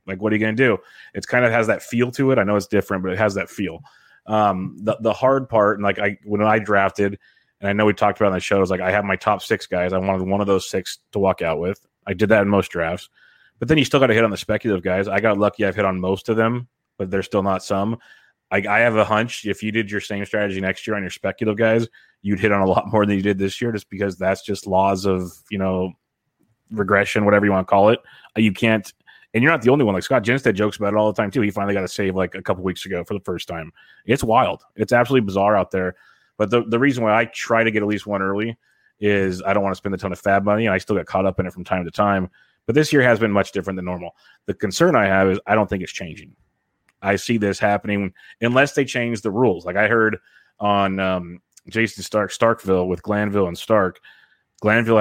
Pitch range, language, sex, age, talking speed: 95-110 Hz, English, male, 30-49, 275 wpm